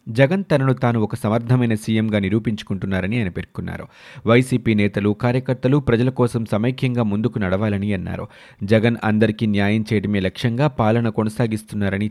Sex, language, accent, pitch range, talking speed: male, Telugu, native, 105-130 Hz, 125 wpm